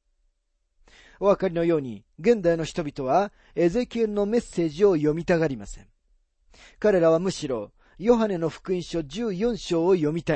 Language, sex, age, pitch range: Japanese, male, 40-59, 145-210 Hz